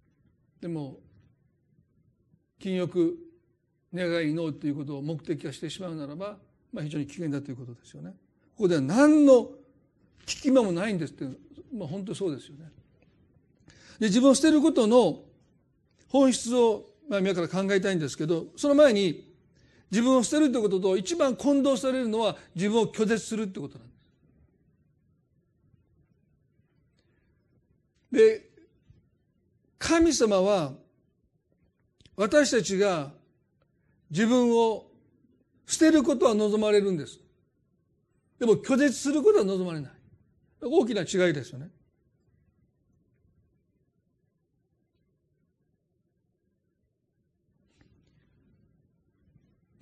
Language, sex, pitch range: Japanese, male, 155-240 Hz